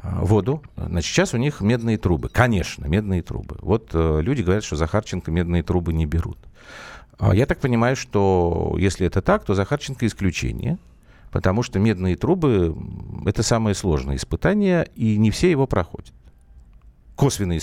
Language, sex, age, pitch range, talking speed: Russian, male, 50-69, 85-115 Hz, 155 wpm